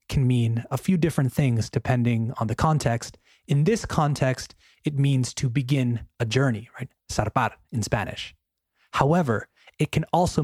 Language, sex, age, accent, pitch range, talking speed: Spanish, male, 30-49, American, 110-145 Hz, 155 wpm